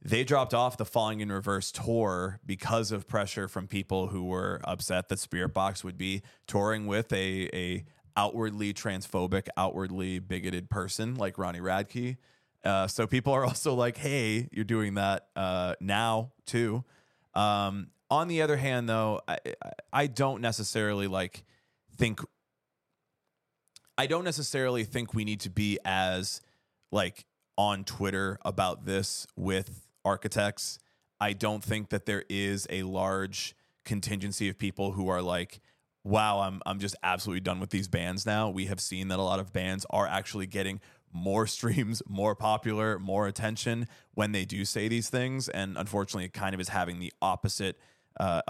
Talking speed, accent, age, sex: 160 wpm, American, 20-39, male